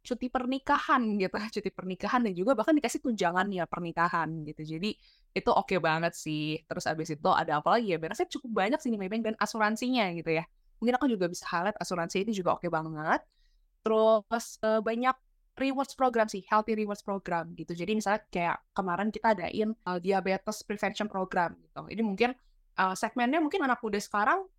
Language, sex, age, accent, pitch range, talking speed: English, female, 20-39, Indonesian, 175-225 Hz, 185 wpm